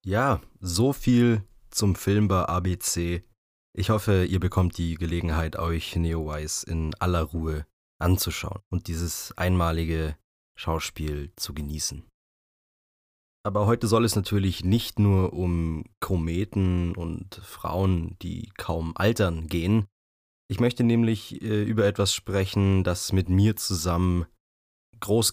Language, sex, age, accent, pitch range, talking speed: German, male, 20-39, German, 85-105 Hz, 120 wpm